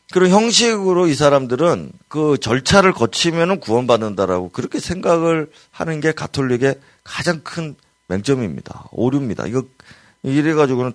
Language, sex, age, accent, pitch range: Korean, male, 30-49, native, 105-165 Hz